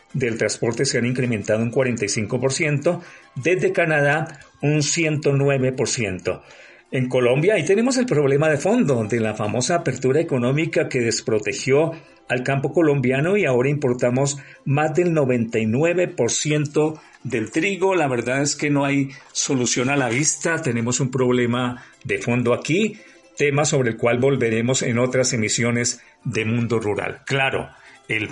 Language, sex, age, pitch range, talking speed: Spanish, male, 50-69, 120-150 Hz, 140 wpm